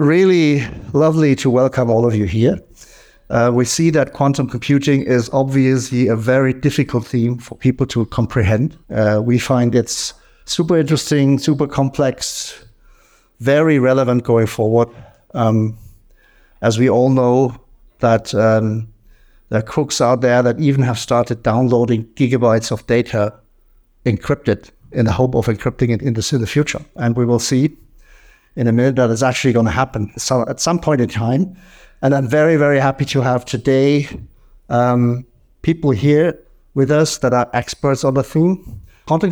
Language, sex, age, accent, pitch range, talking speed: German, male, 60-79, German, 120-145 Hz, 160 wpm